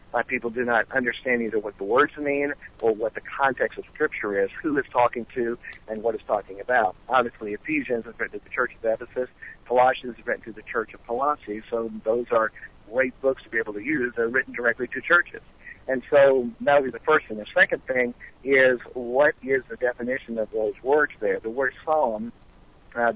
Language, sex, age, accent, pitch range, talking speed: English, male, 60-79, American, 115-135 Hz, 210 wpm